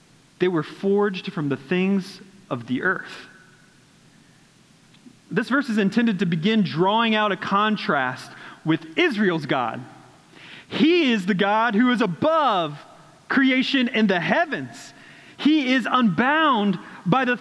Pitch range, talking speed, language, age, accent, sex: 195-260 Hz, 130 wpm, English, 30-49, American, male